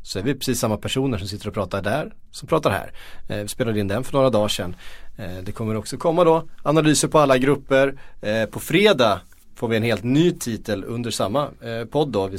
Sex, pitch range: male, 100-130 Hz